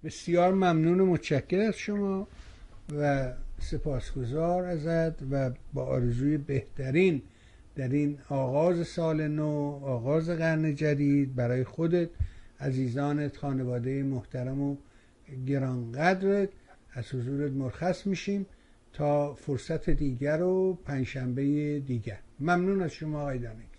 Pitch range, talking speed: 130-160 Hz, 105 wpm